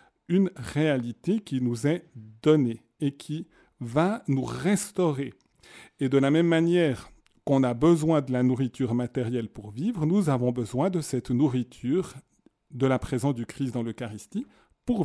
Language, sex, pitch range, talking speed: French, male, 125-170 Hz, 155 wpm